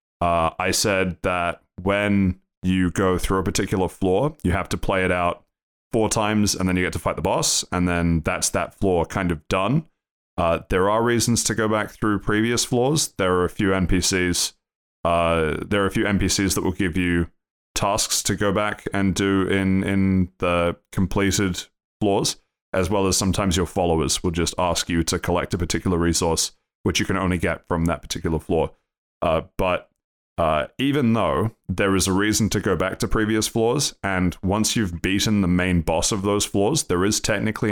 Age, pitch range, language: 20-39, 90-105 Hz, English